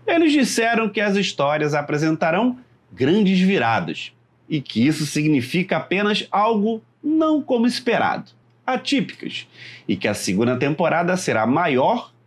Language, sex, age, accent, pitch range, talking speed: Portuguese, male, 30-49, Brazilian, 135-215 Hz, 120 wpm